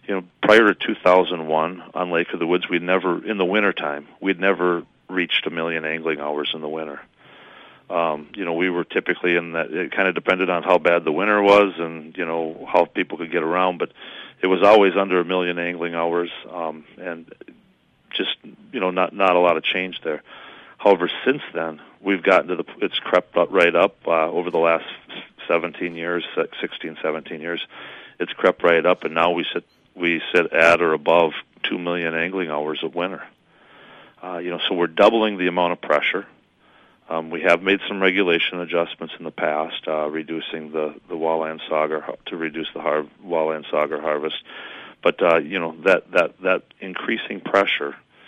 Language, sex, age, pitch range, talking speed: English, male, 40-59, 80-90 Hz, 195 wpm